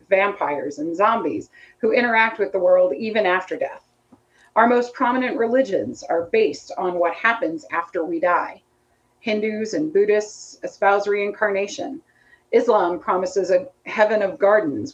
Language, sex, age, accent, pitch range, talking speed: English, female, 30-49, American, 195-280 Hz, 135 wpm